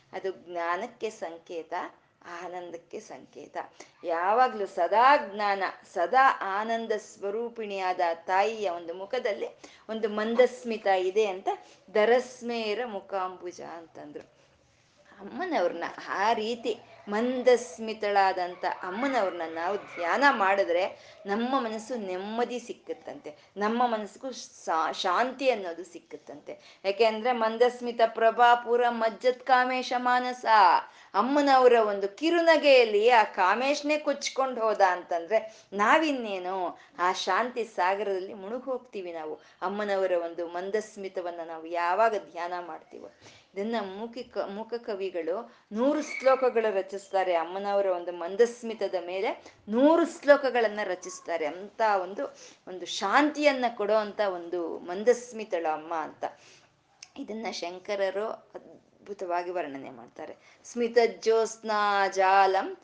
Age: 20-39